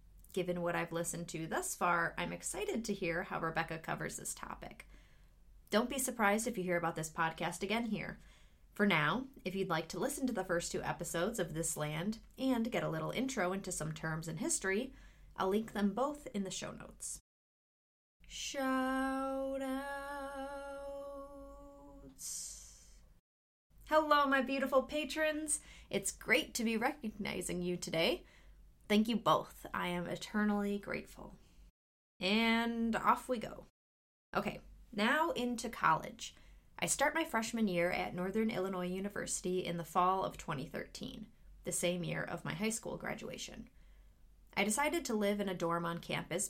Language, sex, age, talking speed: English, female, 30-49, 155 wpm